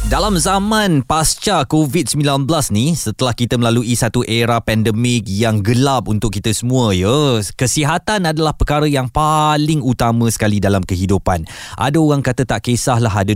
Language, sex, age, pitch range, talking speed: Malay, male, 20-39, 110-155 Hz, 150 wpm